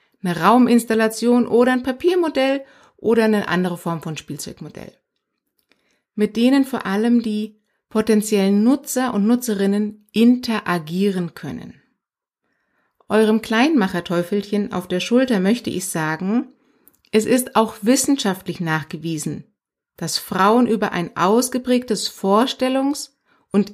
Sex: female